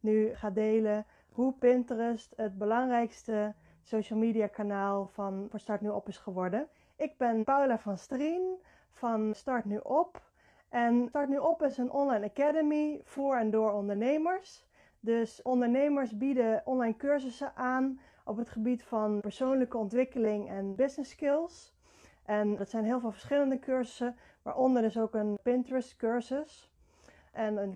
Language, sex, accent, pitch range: Dutch, female, Dutch, 215-260 Hz